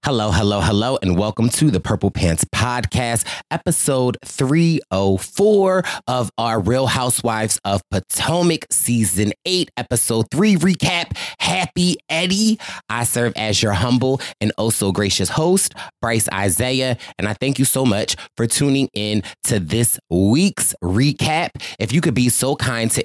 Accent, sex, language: American, male, English